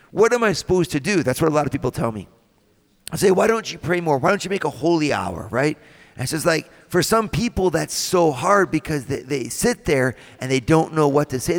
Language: English